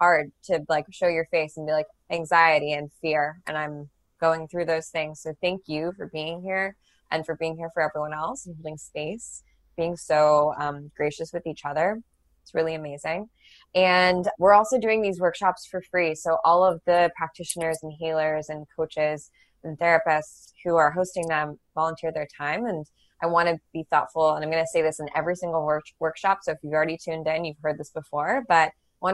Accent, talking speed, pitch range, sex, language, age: American, 200 wpm, 155-170 Hz, female, English, 20-39